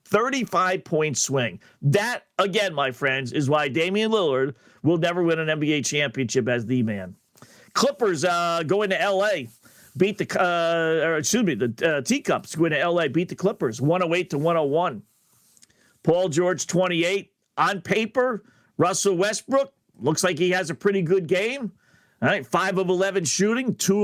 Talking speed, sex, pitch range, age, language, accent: 160 wpm, male, 160-205 Hz, 50-69, English, American